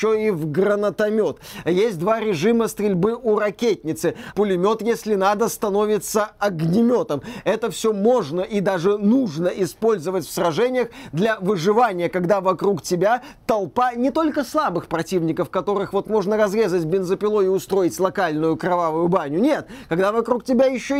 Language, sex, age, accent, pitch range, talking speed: Russian, male, 30-49, native, 185-235 Hz, 145 wpm